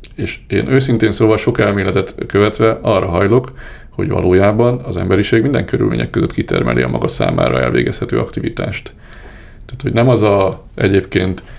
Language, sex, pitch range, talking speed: Hungarian, male, 95-115 Hz, 145 wpm